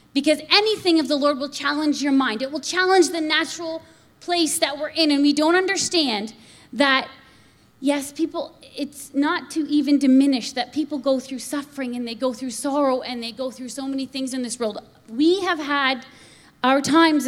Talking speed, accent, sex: 190 wpm, American, female